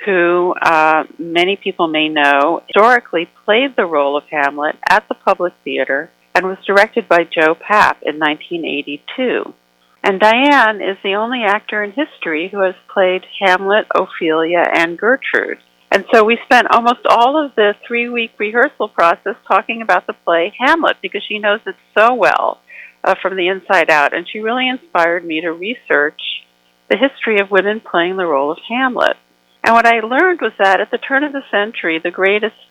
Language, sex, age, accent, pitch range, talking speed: English, female, 50-69, American, 160-225 Hz, 175 wpm